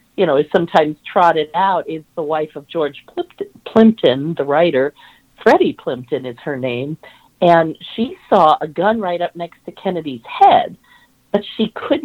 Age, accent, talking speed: 50-69, American, 165 wpm